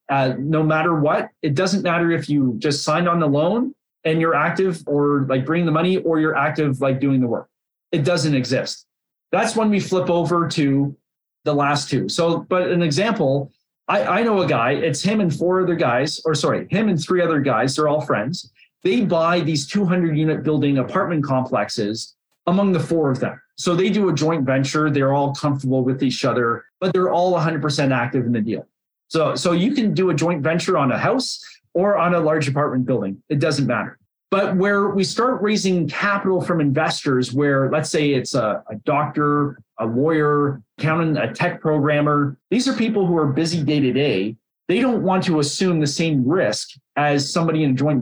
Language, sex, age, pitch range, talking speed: English, male, 30-49, 140-175 Hz, 200 wpm